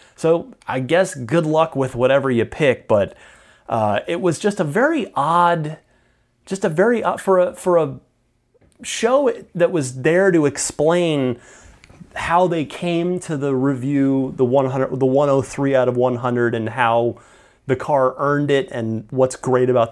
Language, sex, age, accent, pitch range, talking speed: English, male, 30-49, American, 115-170 Hz, 165 wpm